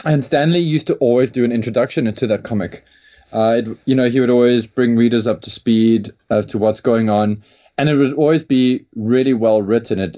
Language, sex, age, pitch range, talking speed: English, male, 20-39, 115-140 Hz, 220 wpm